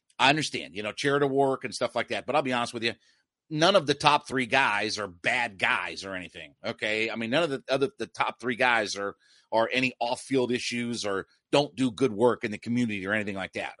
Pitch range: 120-150 Hz